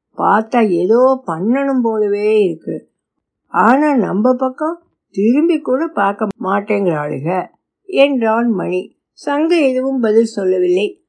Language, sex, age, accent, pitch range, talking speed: Tamil, female, 60-79, native, 185-245 Hz, 95 wpm